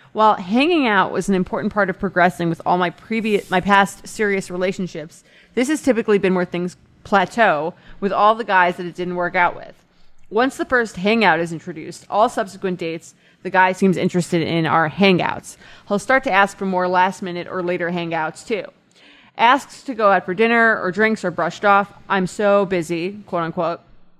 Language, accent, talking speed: English, American, 190 wpm